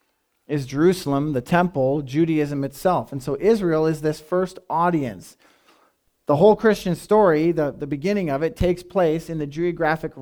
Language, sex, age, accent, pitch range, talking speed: English, male, 40-59, American, 140-180 Hz, 160 wpm